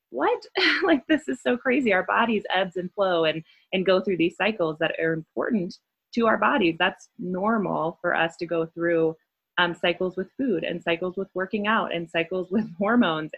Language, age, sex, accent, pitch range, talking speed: English, 20-39, female, American, 165-195 Hz, 195 wpm